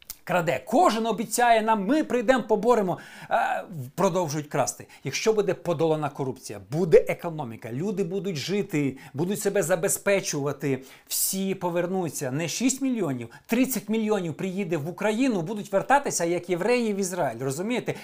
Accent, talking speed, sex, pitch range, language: native, 130 wpm, male, 175-240 Hz, Ukrainian